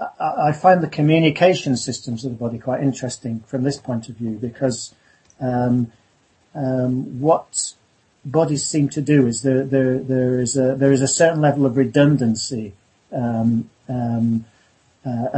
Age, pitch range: 40-59, 120-135 Hz